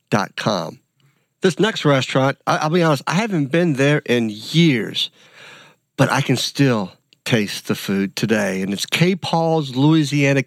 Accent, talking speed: American, 145 wpm